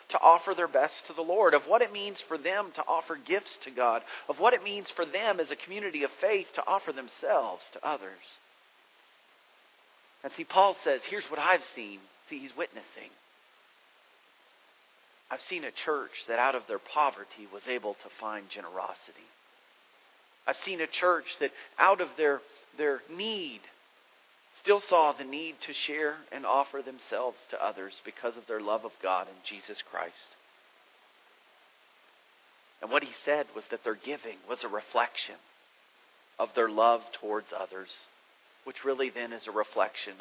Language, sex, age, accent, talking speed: English, male, 40-59, American, 165 wpm